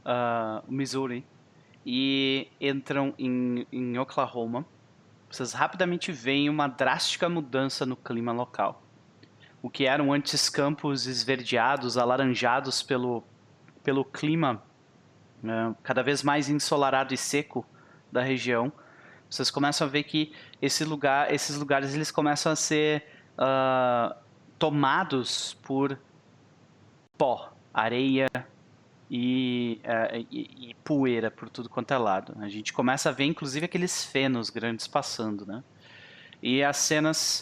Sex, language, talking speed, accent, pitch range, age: male, Portuguese, 125 wpm, Brazilian, 120-145 Hz, 20-39